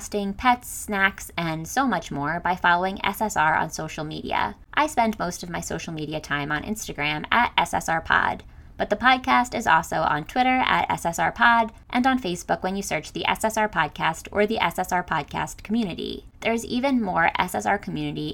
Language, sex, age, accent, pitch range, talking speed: English, female, 20-39, American, 175-235 Hz, 170 wpm